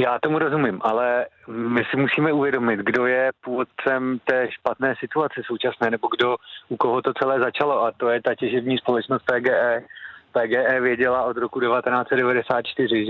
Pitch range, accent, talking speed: 120-125 Hz, native, 155 wpm